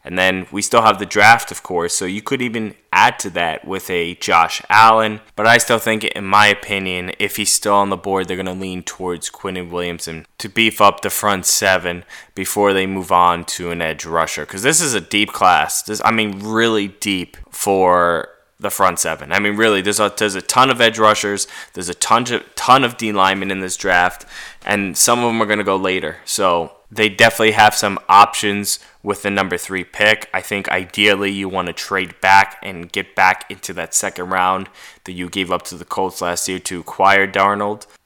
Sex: male